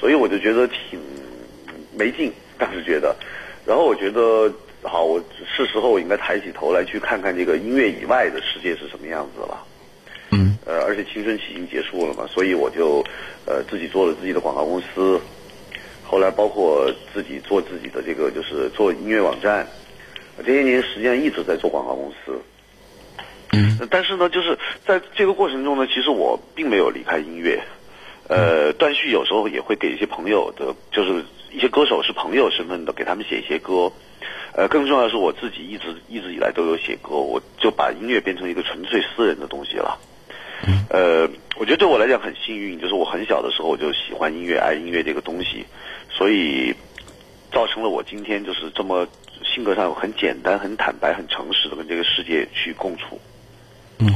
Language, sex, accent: Chinese, male, native